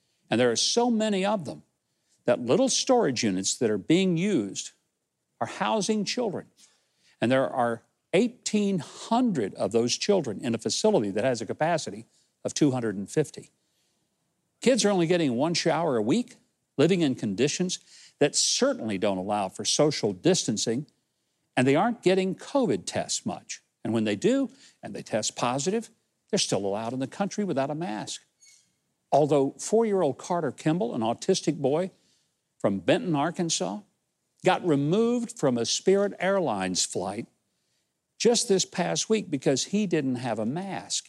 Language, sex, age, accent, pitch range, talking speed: English, male, 60-79, American, 130-205 Hz, 150 wpm